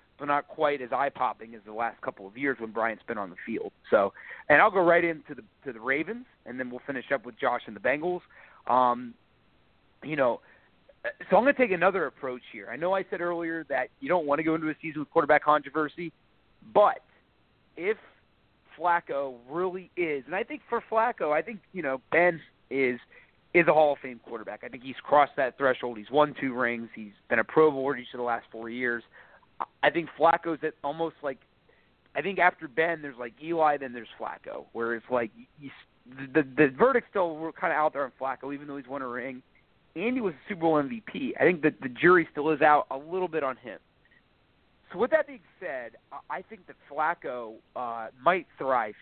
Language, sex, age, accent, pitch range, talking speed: English, male, 30-49, American, 125-170 Hz, 215 wpm